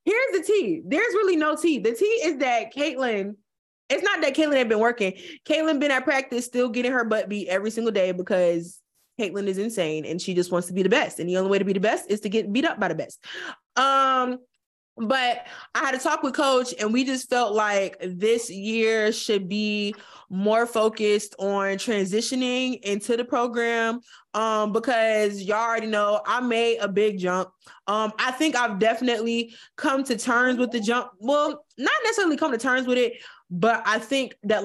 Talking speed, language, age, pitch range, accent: 200 wpm, English, 20-39, 195-260 Hz, American